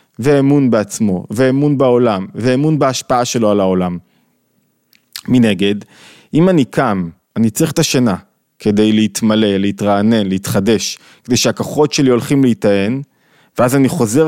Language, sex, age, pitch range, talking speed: Hebrew, male, 20-39, 115-180 Hz, 120 wpm